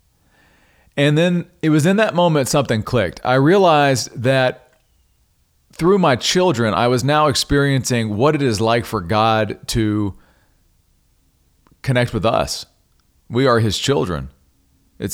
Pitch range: 95-135 Hz